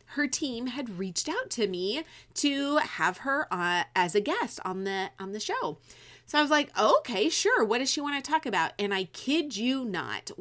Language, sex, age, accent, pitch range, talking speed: English, female, 30-49, American, 175-270 Hz, 200 wpm